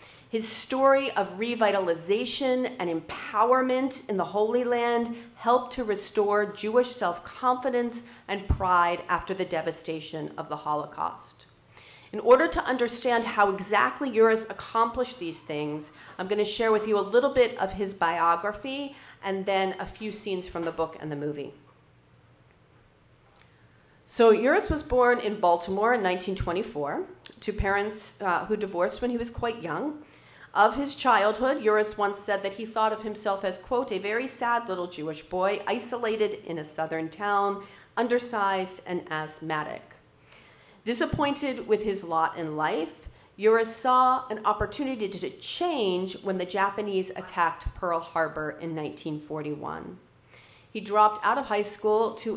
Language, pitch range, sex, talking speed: English, 175-235 Hz, female, 145 wpm